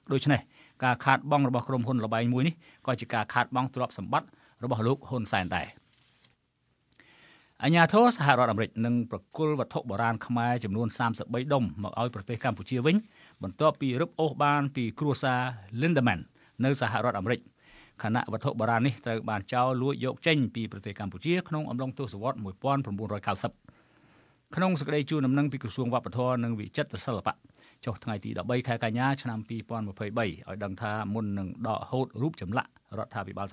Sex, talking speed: male, 40 wpm